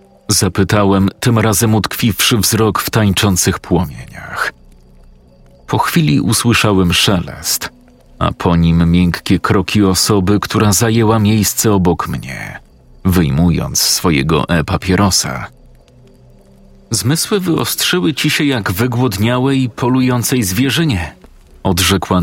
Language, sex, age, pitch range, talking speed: Polish, male, 40-59, 90-115 Hz, 95 wpm